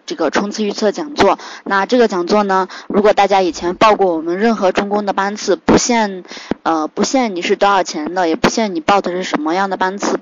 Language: Chinese